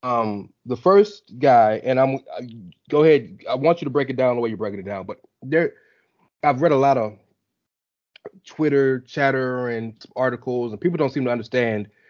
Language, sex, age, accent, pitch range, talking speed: English, male, 30-49, American, 120-165 Hz, 190 wpm